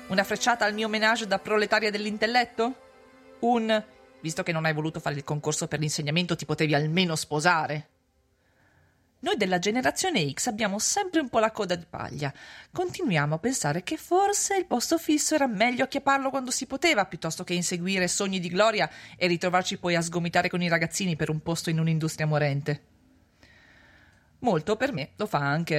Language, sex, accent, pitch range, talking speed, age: Italian, female, native, 155-225 Hz, 175 wpm, 30-49